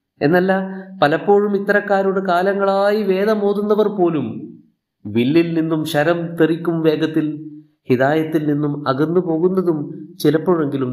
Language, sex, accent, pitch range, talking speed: Malayalam, male, native, 130-175 Hz, 80 wpm